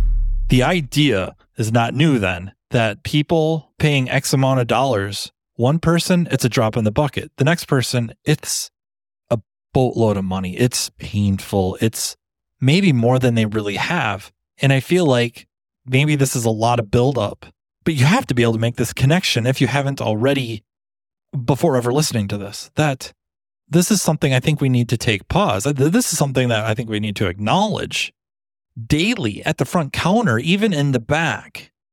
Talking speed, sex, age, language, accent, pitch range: 185 wpm, male, 30-49, English, American, 110-150 Hz